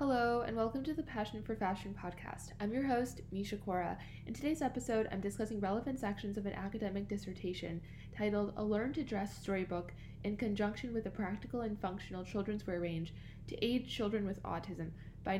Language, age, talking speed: English, 10-29, 185 wpm